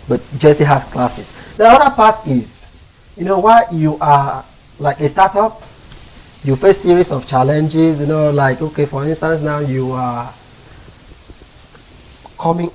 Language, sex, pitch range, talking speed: English, male, 125-160 Hz, 145 wpm